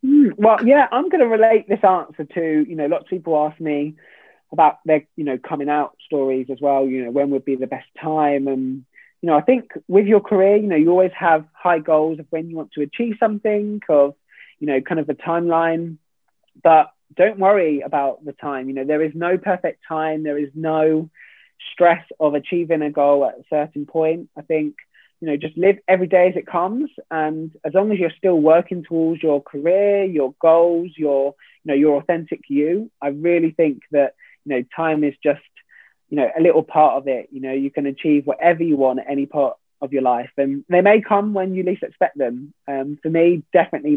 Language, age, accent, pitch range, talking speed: English, 20-39, British, 140-175 Hz, 215 wpm